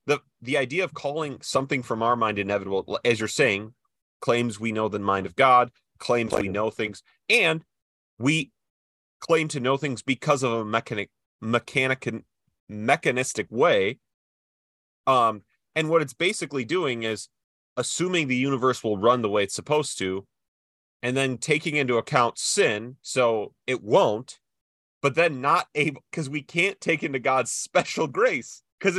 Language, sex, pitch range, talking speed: English, male, 115-160 Hz, 155 wpm